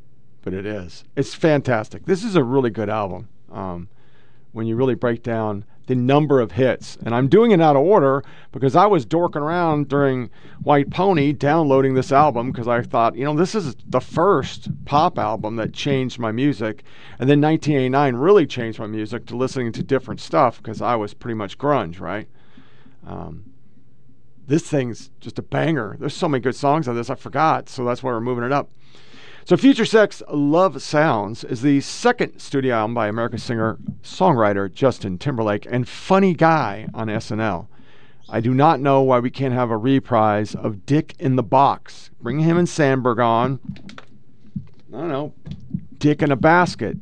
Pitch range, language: 115-145 Hz, English